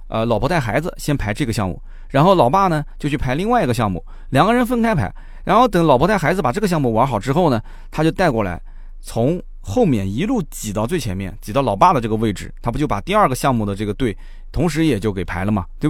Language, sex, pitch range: Chinese, male, 110-180 Hz